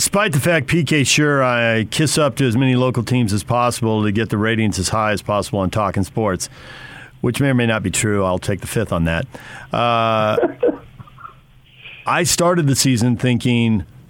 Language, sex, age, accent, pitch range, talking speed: English, male, 50-69, American, 110-140 Hz, 190 wpm